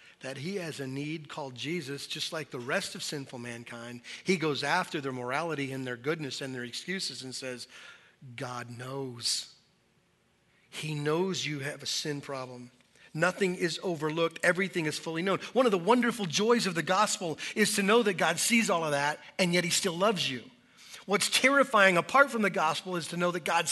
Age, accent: 40-59, American